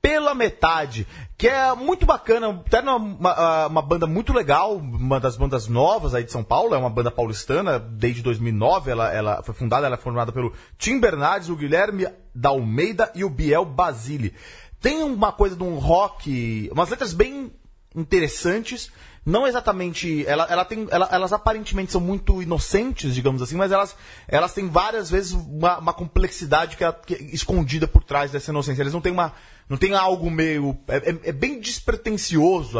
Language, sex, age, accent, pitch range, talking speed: Portuguese, male, 30-49, Brazilian, 140-215 Hz, 175 wpm